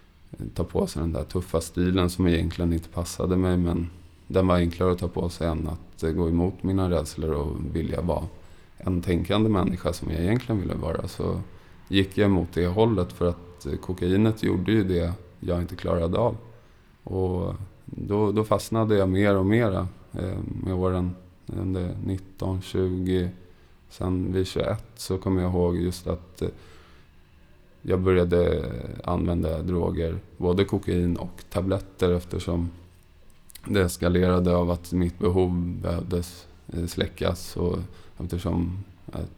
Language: Swedish